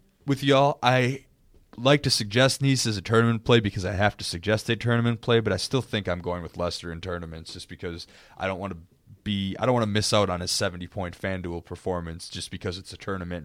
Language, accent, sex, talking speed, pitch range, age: English, American, male, 230 wpm, 90-120 Hz, 20-39